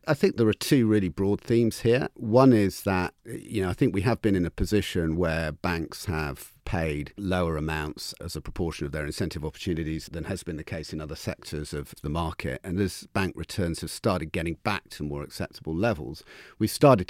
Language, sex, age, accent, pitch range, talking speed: English, male, 50-69, British, 75-100 Hz, 210 wpm